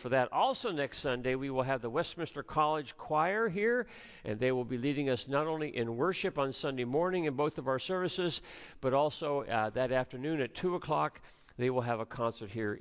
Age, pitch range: 50-69, 115-150 Hz